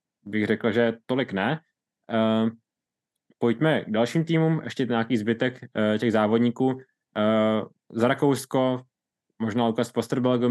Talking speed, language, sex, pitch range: 130 wpm, Czech, male, 110-120 Hz